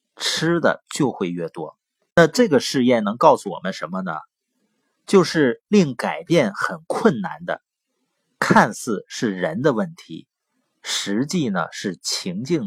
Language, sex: Chinese, male